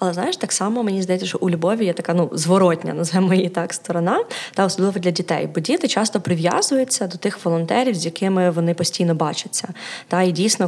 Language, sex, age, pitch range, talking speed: Ukrainian, female, 20-39, 175-230 Hz, 200 wpm